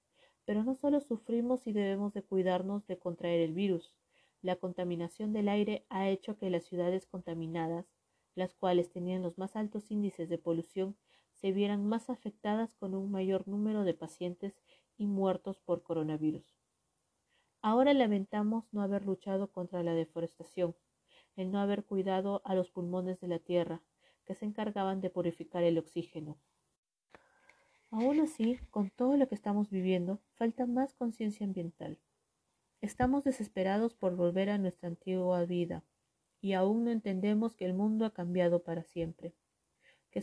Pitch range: 175-215 Hz